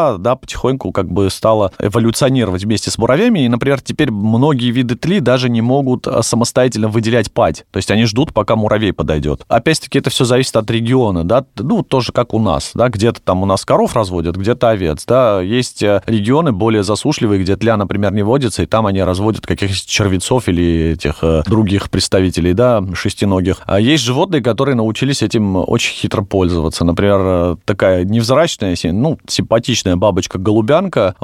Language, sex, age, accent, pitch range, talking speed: Russian, male, 30-49, native, 95-120 Hz, 165 wpm